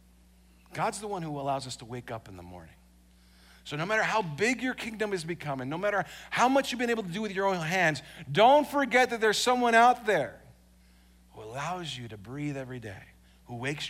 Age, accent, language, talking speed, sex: 50-69, American, English, 215 wpm, male